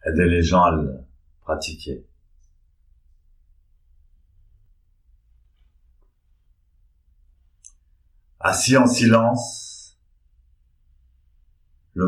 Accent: French